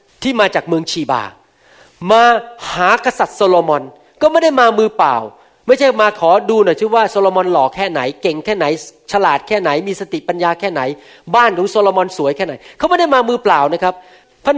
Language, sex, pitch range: Thai, male, 150-215 Hz